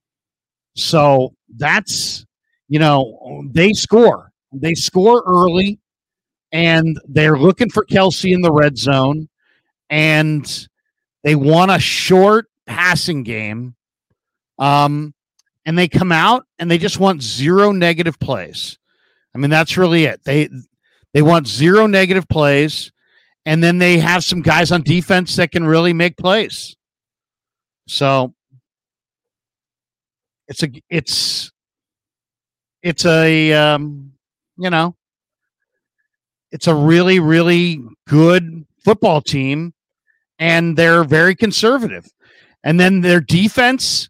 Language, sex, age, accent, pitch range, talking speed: English, male, 50-69, American, 145-185 Hz, 115 wpm